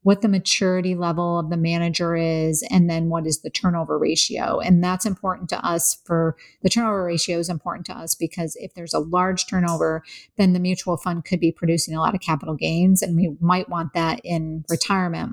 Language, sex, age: English, female, 30-49